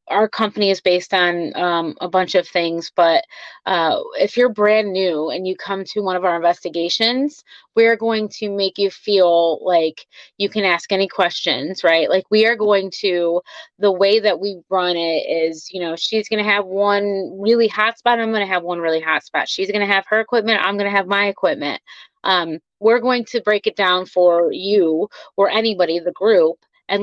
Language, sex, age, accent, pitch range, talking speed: English, female, 30-49, American, 180-220 Hz, 205 wpm